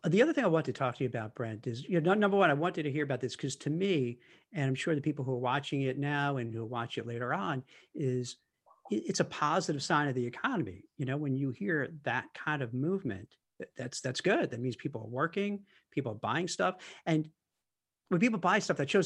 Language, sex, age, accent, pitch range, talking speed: English, male, 50-69, American, 135-170 Hz, 240 wpm